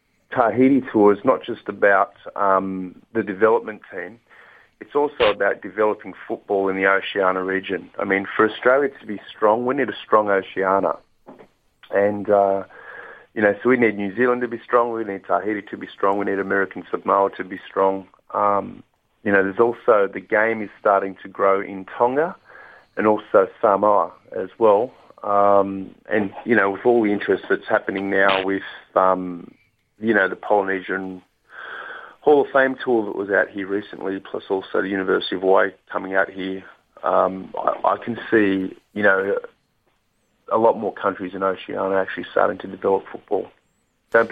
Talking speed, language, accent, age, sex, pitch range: 175 wpm, English, Australian, 30-49, male, 95-110 Hz